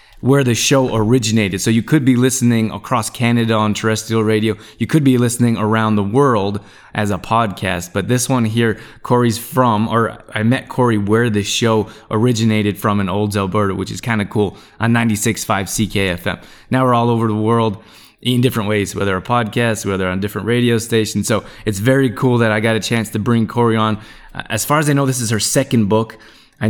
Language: English